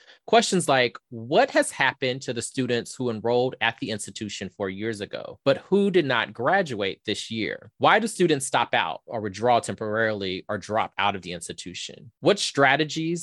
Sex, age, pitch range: male, 20-39, 105-135 Hz